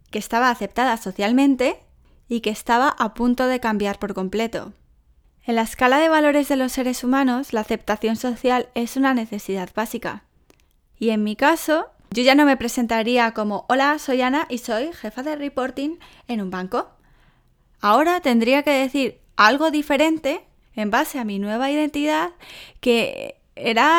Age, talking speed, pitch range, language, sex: 10-29, 160 wpm, 215-270 Hz, English, female